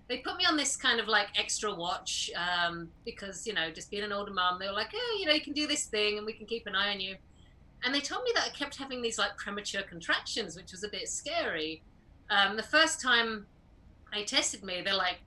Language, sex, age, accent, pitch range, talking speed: English, female, 30-49, British, 185-230 Hz, 250 wpm